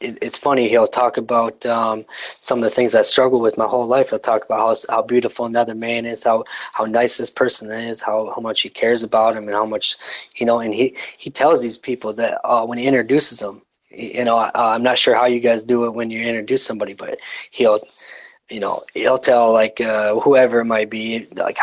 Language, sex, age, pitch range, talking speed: English, male, 20-39, 110-135 Hz, 230 wpm